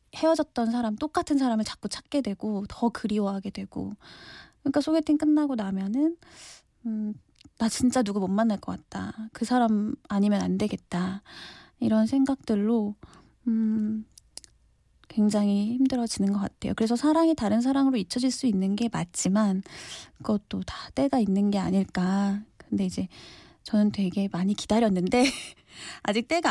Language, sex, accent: Korean, female, native